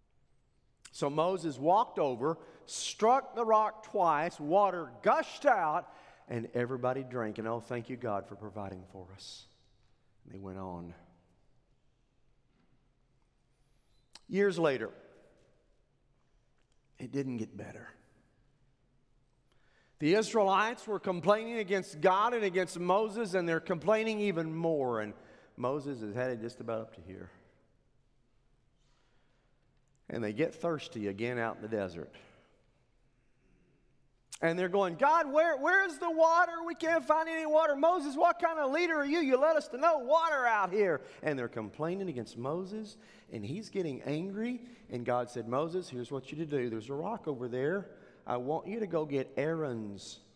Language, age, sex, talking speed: English, 50-69, male, 150 wpm